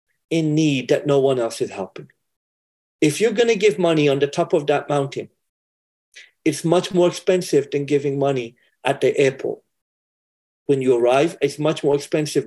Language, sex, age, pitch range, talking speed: English, male, 50-69, 135-185 Hz, 175 wpm